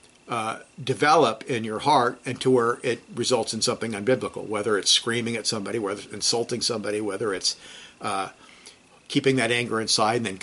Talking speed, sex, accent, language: 180 wpm, male, American, English